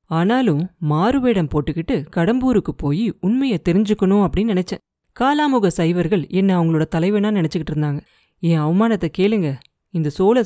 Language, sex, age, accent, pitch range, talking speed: Tamil, female, 30-49, native, 165-215 Hz, 120 wpm